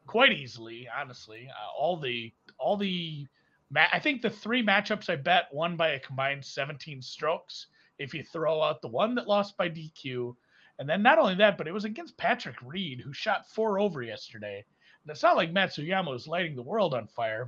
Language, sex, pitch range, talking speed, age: English, male, 130-195 Hz, 205 wpm, 40-59